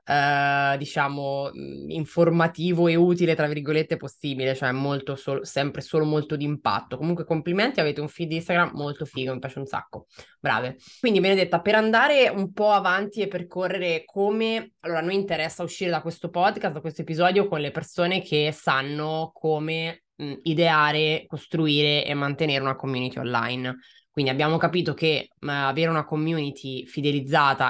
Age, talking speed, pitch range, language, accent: 20-39, 160 wpm, 135-165 Hz, Italian, native